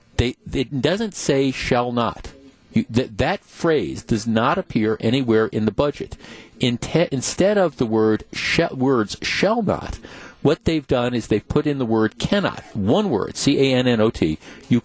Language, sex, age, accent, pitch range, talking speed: English, male, 50-69, American, 110-135 Hz, 180 wpm